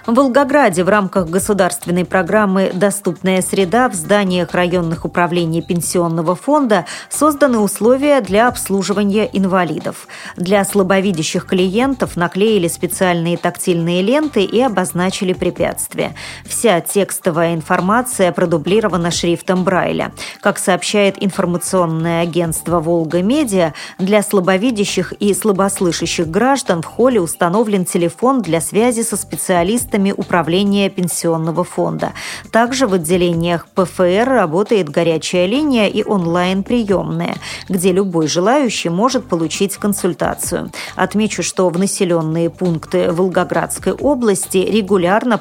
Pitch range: 175-210 Hz